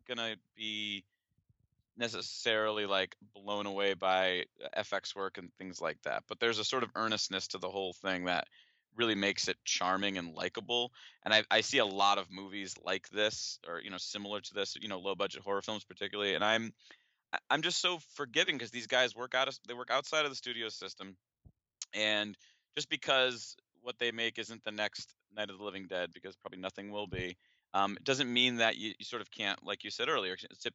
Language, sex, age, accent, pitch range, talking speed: English, male, 30-49, American, 95-120 Hz, 205 wpm